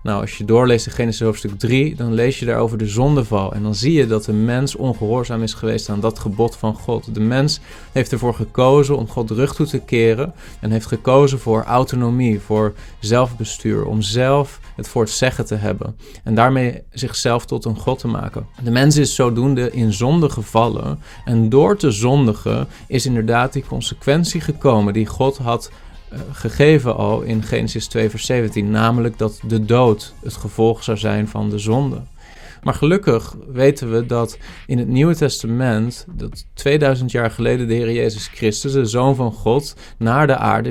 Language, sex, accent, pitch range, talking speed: Dutch, male, Dutch, 110-135 Hz, 185 wpm